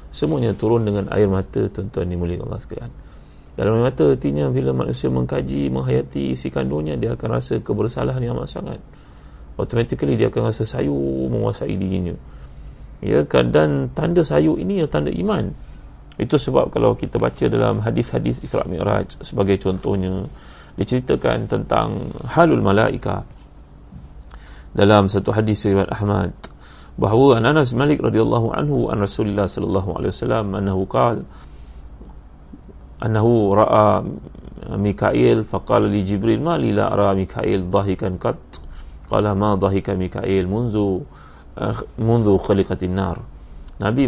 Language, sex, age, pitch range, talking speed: Malay, male, 30-49, 75-105 Hz, 125 wpm